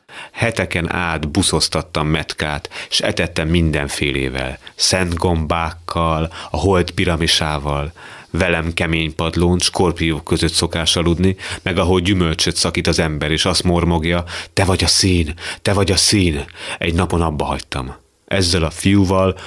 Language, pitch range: Hungarian, 80-90 Hz